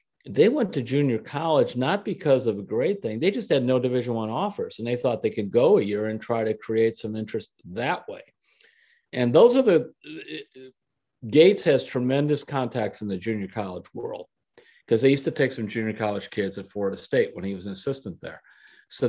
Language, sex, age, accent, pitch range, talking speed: English, male, 50-69, American, 110-145 Hz, 210 wpm